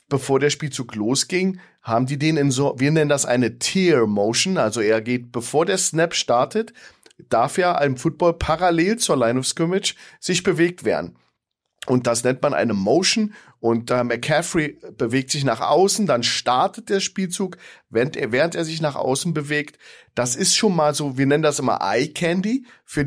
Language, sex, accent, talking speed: German, male, German, 180 wpm